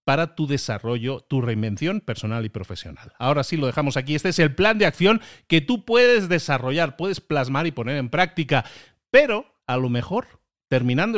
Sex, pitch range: male, 120-165 Hz